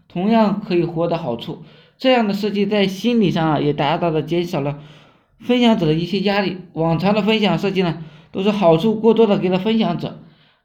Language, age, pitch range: Chinese, 20-39, 170-220 Hz